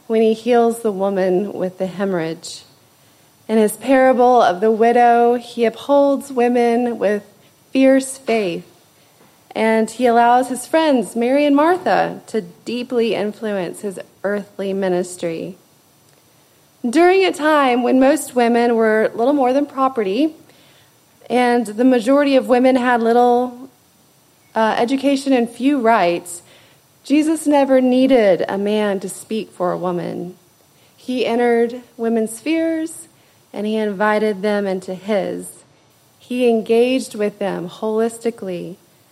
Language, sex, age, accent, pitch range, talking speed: English, female, 30-49, American, 200-255 Hz, 125 wpm